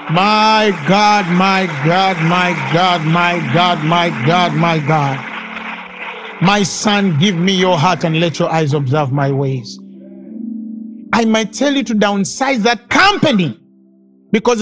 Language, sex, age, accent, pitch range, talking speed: English, male, 50-69, Nigerian, 165-230 Hz, 140 wpm